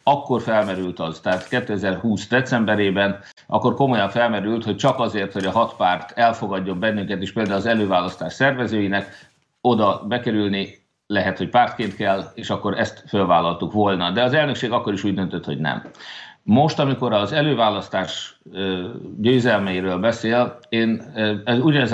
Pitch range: 100-125 Hz